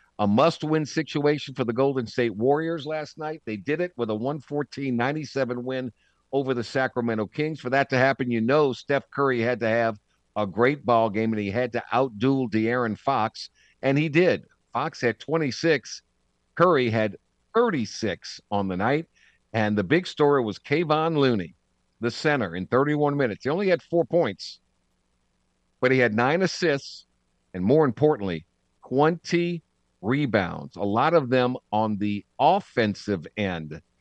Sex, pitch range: male, 105-150 Hz